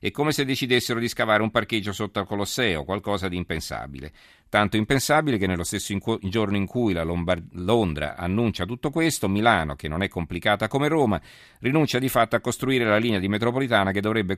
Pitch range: 90-110 Hz